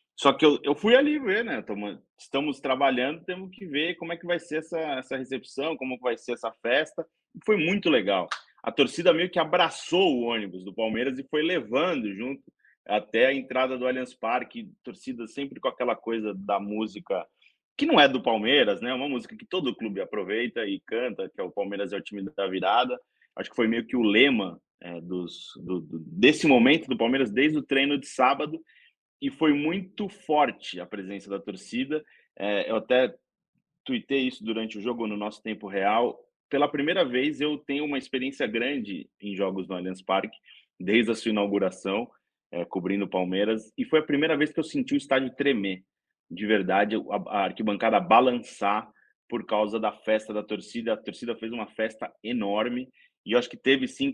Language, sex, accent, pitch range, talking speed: Portuguese, male, Brazilian, 105-155 Hz, 190 wpm